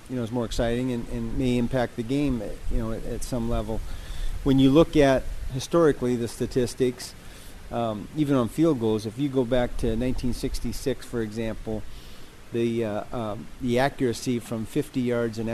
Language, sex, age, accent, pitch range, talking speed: English, male, 40-59, American, 110-125 Hz, 180 wpm